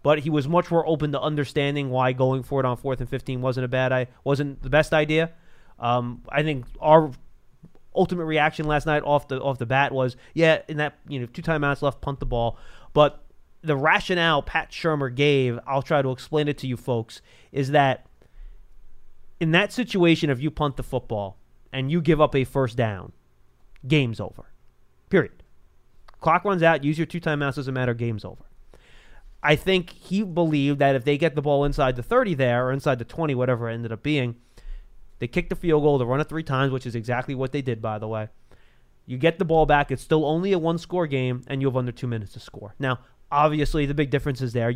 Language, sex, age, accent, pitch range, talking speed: English, male, 30-49, American, 125-150 Hz, 215 wpm